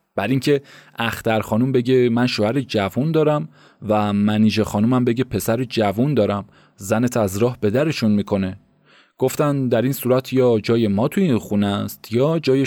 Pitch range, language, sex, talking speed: 105-135 Hz, Persian, male, 160 wpm